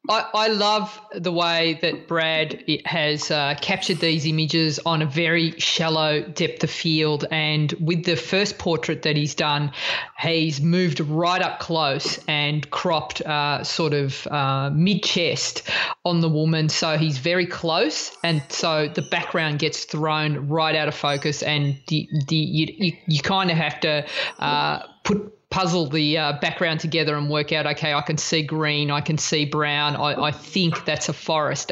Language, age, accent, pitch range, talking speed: English, 20-39, Australian, 150-175 Hz, 175 wpm